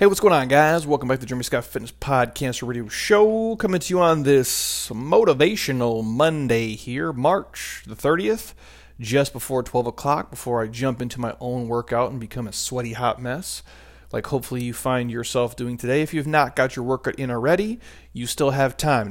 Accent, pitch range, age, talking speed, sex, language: American, 115-140 Hz, 40-59, 195 wpm, male, English